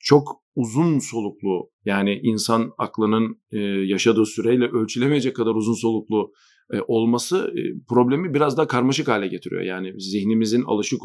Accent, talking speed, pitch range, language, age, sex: native, 135 wpm, 110-130 Hz, Turkish, 40-59, male